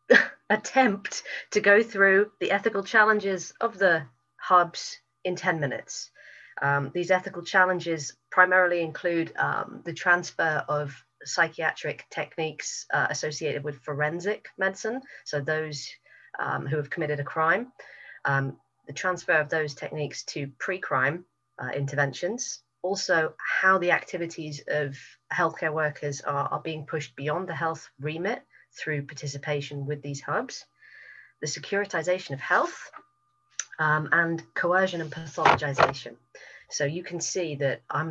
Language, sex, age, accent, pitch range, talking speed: English, female, 30-49, British, 145-185 Hz, 130 wpm